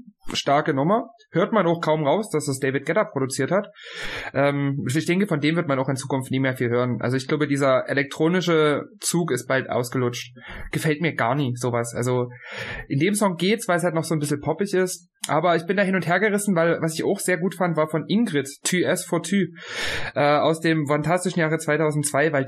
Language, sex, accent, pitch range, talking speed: German, male, German, 140-185 Hz, 220 wpm